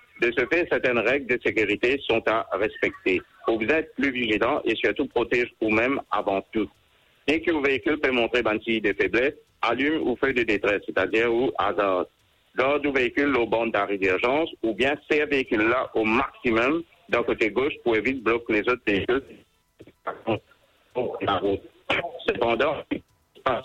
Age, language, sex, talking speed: 60-79, English, male, 165 wpm